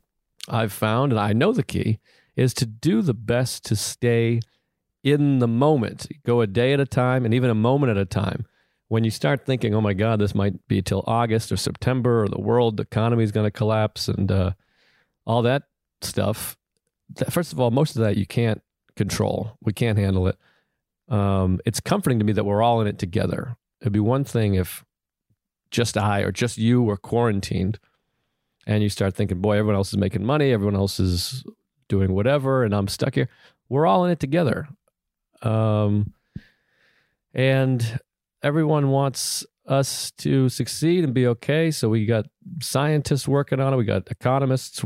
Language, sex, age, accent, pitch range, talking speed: English, male, 40-59, American, 105-130 Hz, 185 wpm